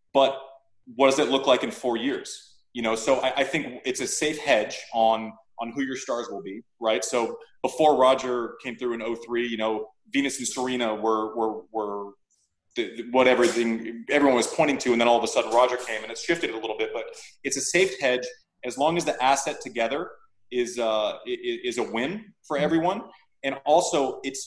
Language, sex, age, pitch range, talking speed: English, male, 30-49, 115-150 Hz, 210 wpm